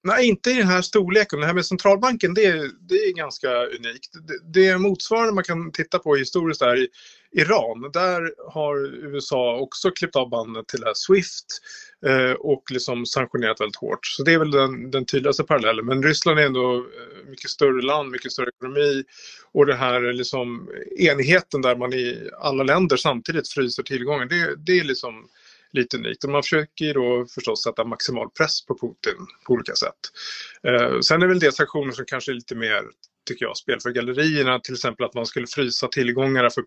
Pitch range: 125-180 Hz